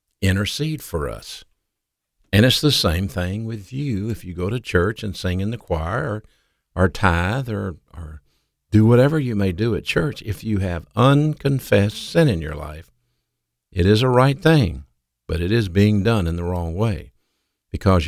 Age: 50-69